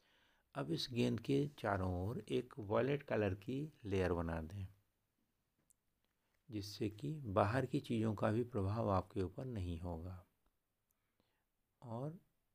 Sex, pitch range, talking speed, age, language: male, 95-115 Hz, 125 wpm, 60-79, Hindi